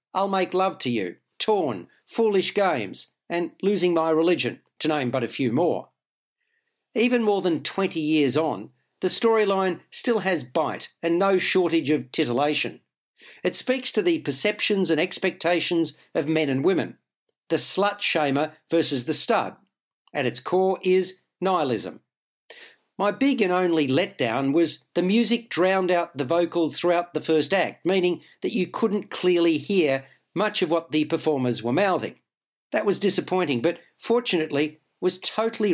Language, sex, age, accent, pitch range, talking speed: English, male, 60-79, Australian, 155-195 Hz, 155 wpm